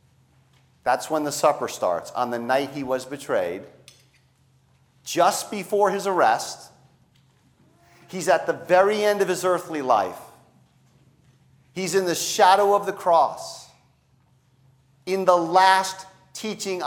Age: 40-59